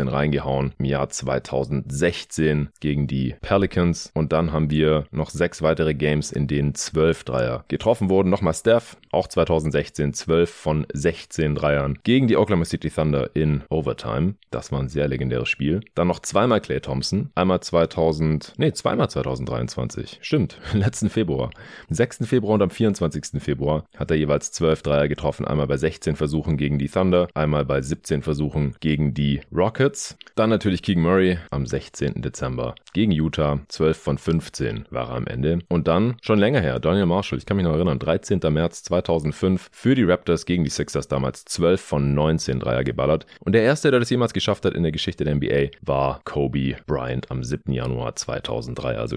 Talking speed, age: 180 wpm, 30-49